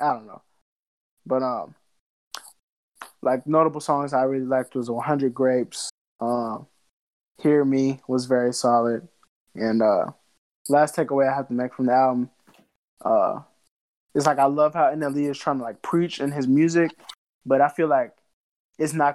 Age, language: 20-39, English